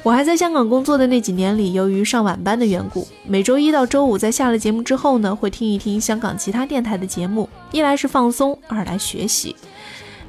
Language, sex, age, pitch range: Chinese, female, 20-39, 210-275 Hz